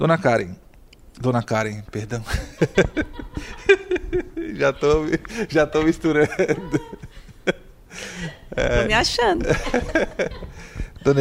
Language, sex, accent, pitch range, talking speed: Portuguese, male, Brazilian, 120-165 Hz, 75 wpm